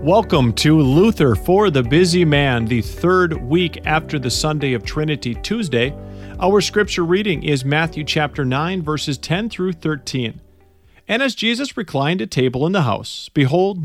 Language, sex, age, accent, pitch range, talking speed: English, male, 40-59, American, 145-200 Hz, 160 wpm